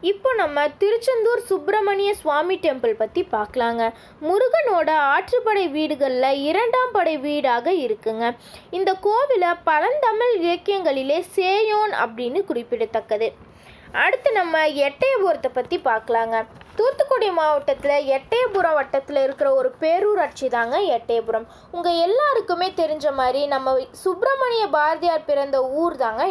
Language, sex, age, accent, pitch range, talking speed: Tamil, female, 20-39, native, 260-395 Hz, 105 wpm